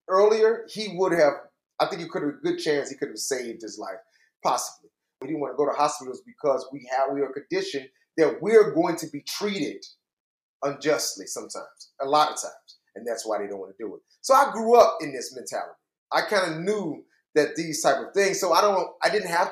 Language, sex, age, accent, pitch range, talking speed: English, male, 30-49, American, 140-205 Hz, 230 wpm